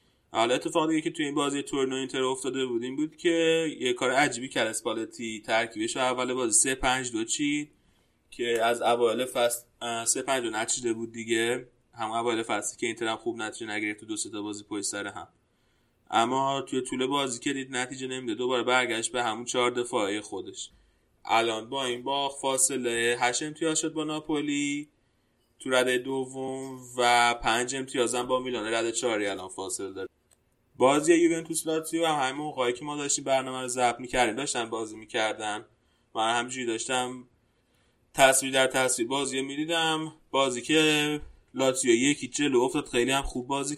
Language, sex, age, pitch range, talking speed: Persian, male, 20-39, 120-145 Hz, 170 wpm